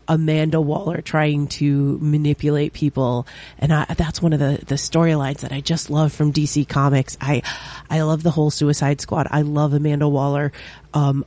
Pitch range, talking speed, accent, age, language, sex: 145-160 Hz, 175 wpm, American, 30-49, English, female